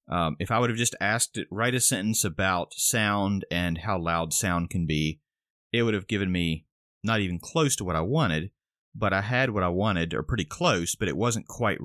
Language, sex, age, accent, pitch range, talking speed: English, male, 30-49, American, 90-115 Hz, 225 wpm